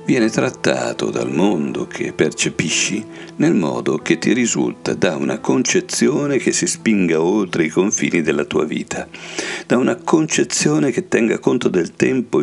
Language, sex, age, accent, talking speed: Italian, male, 60-79, native, 150 wpm